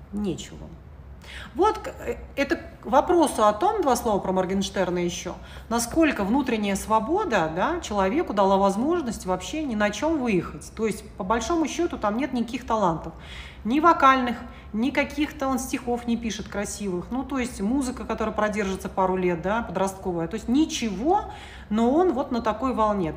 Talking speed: 160 wpm